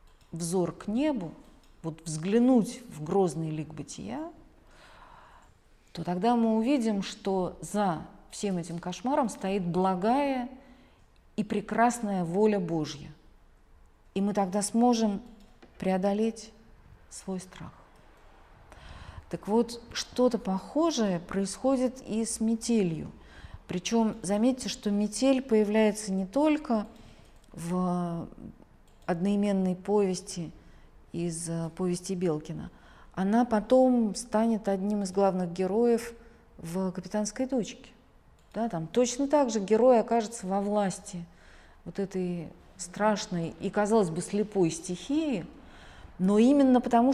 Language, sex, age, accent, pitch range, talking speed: Russian, female, 40-59, native, 175-230 Hz, 105 wpm